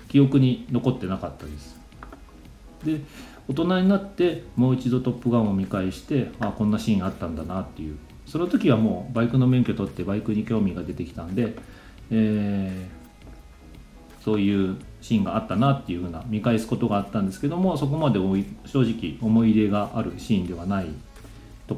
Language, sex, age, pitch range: Japanese, male, 40-59, 95-140 Hz